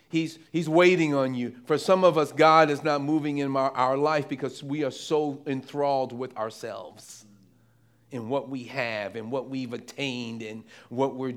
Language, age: English, 40-59